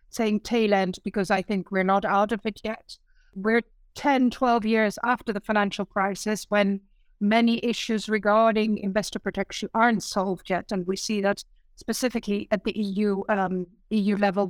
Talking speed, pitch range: 165 wpm, 195-225 Hz